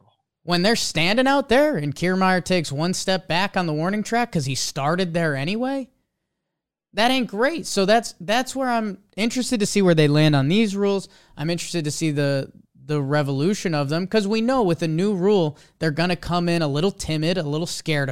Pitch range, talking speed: 145-200 Hz, 210 wpm